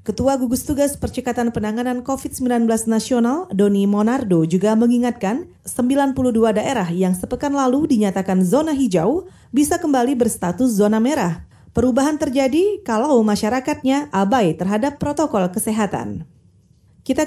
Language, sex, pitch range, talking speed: Indonesian, female, 205-265 Hz, 115 wpm